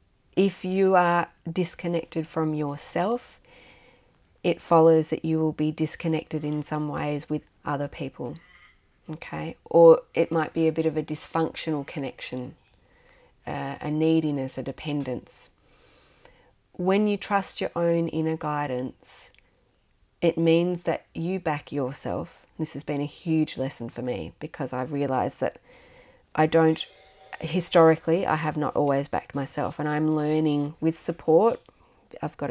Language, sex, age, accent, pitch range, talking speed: English, female, 30-49, Australian, 145-170 Hz, 140 wpm